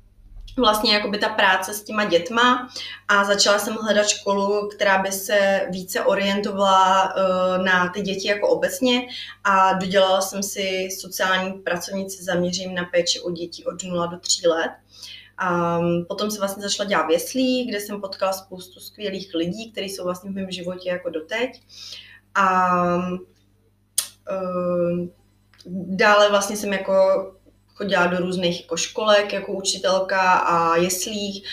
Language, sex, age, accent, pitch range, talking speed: Czech, female, 20-39, native, 180-205 Hz, 140 wpm